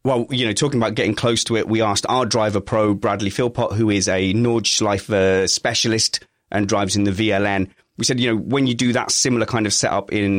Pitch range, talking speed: 100-130 Hz, 225 wpm